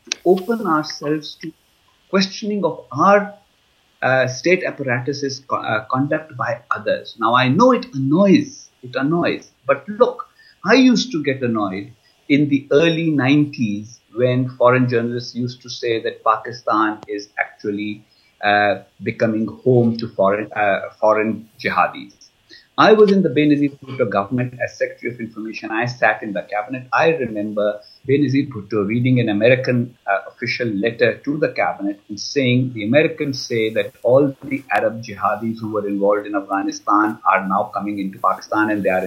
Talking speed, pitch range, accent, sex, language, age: 155 wpm, 110-155 Hz, Indian, male, English, 50-69